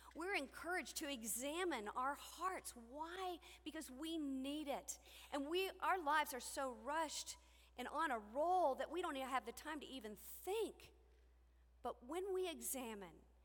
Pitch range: 215-325 Hz